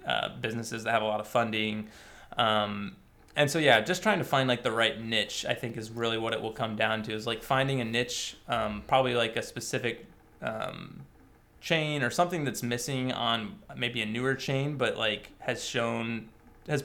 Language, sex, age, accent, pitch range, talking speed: English, male, 20-39, American, 115-135 Hz, 200 wpm